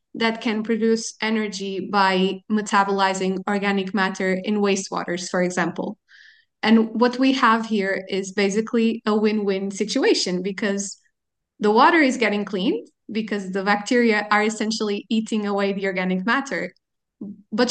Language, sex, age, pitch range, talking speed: English, female, 20-39, 200-240 Hz, 130 wpm